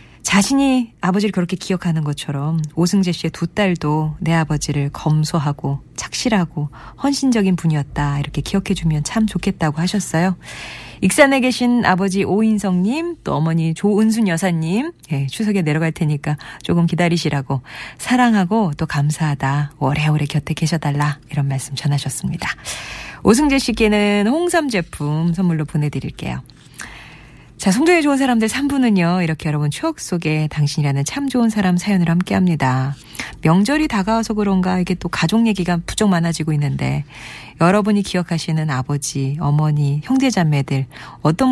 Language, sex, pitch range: Korean, female, 150-200 Hz